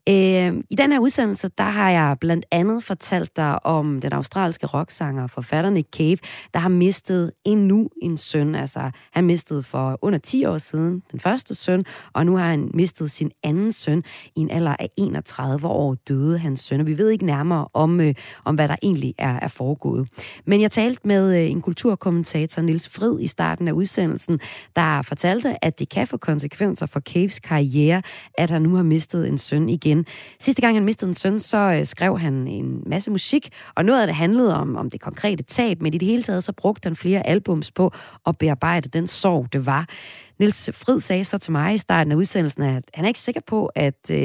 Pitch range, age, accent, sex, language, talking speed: 150-195 Hz, 30-49, native, female, Danish, 205 wpm